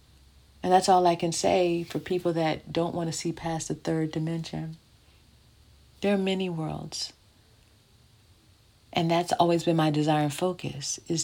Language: English